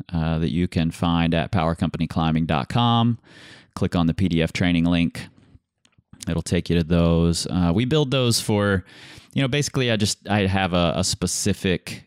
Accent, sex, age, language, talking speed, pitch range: American, male, 30-49, English, 165 wpm, 85-110 Hz